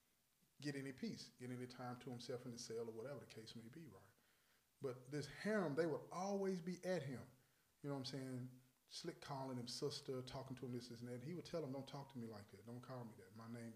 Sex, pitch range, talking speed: male, 115-140 Hz, 255 wpm